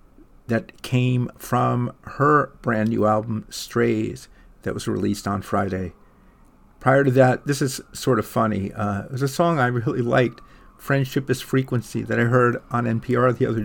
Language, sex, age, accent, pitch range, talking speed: English, male, 50-69, American, 110-145 Hz, 170 wpm